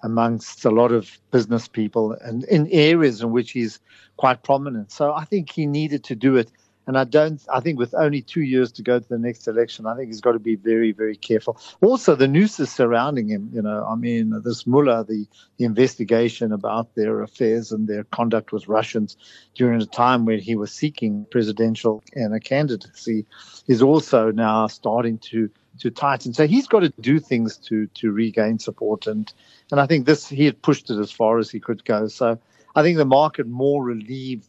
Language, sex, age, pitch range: English, male, 50-69, 115-140 Hz